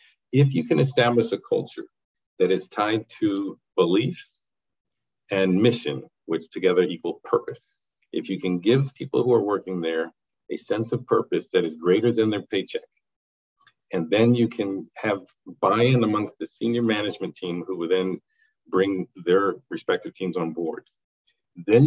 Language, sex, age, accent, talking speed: English, male, 50-69, American, 155 wpm